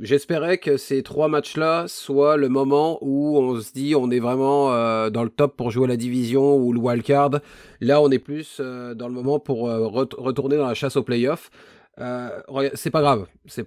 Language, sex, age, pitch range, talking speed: French, male, 30-49, 130-155 Hz, 195 wpm